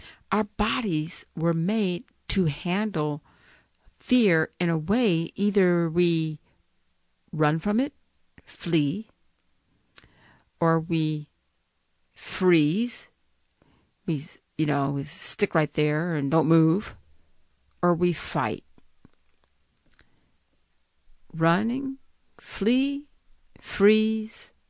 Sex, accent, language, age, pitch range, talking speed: female, American, English, 50-69, 155-205 Hz, 85 wpm